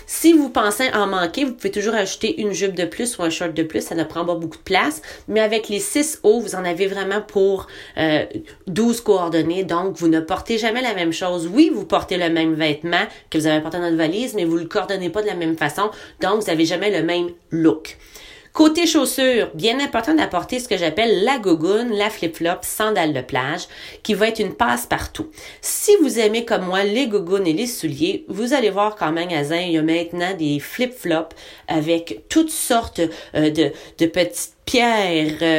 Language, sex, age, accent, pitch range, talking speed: French, female, 30-49, Canadian, 165-230 Hz, 210 wpm